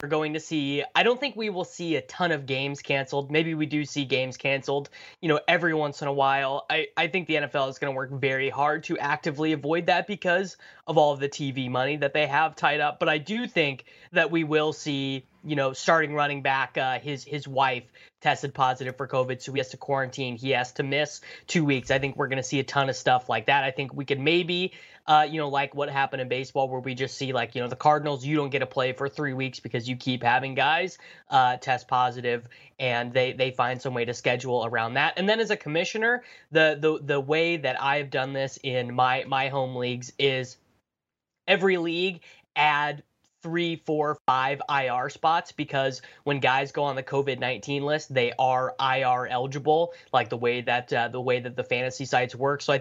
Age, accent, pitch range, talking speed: 20-39, American, 130-155 Hz, 230 wpm